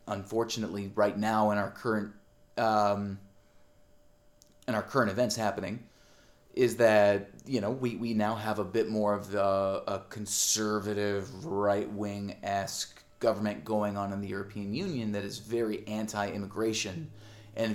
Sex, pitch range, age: male, 105-125 Hz, 30-49